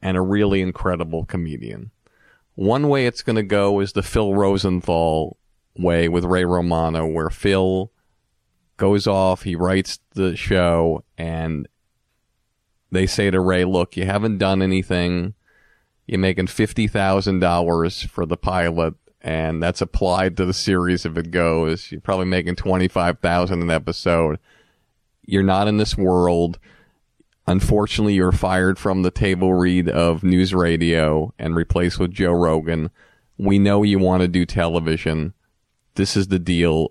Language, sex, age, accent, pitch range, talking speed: English, male, 40-59, American, 85-95 Hz, 150 wpm